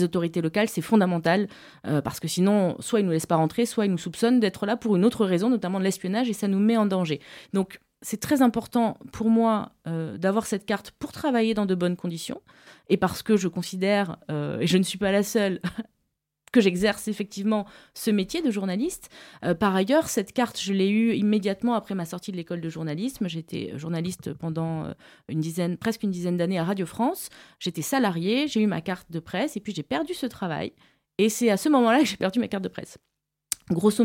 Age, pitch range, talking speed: 20-39, 180-230 Hz, 220 wpm